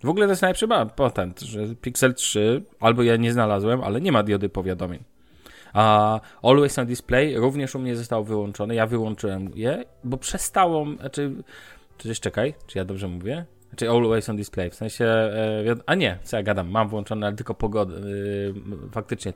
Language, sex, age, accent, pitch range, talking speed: Polish, male, 20-39, native, 100-120 Hz, 175 wpm